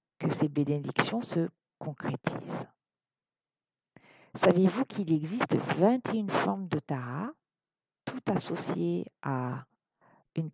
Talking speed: 90 wpm